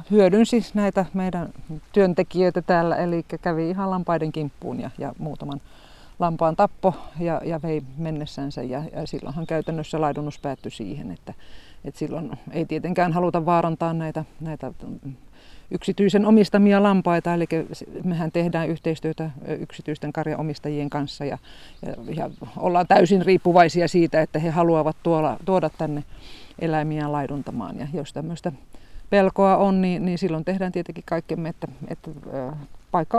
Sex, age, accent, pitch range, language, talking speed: female, 50-69, native, 155-180 Hz, Finnish, 130 wpm